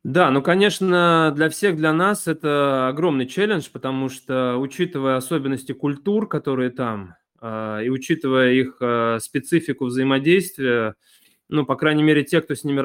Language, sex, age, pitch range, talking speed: Russian, male, 20-39, 125-150 Hz, 140 wpm